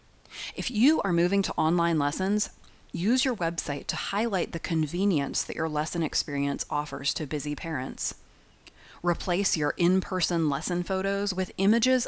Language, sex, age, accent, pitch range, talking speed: English, female, 30-49, American, 155-200 Hz, 145 wpm